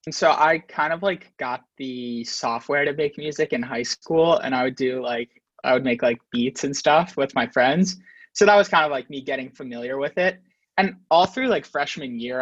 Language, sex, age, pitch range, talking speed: English, male, 20-39, 125-155 Hz, 225 wpm